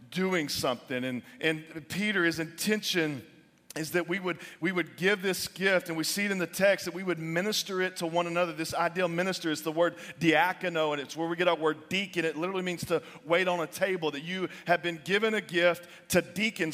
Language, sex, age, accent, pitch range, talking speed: English, male, 40-59, American, 165-195 Hz, 225 wpm